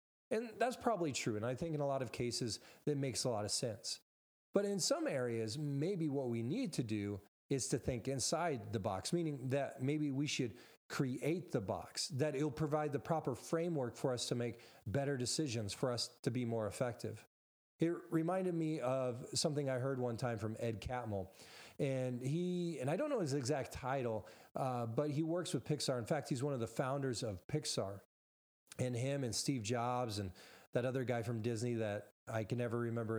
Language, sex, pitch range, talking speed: English, male, 115-150 Hz, 205 wpm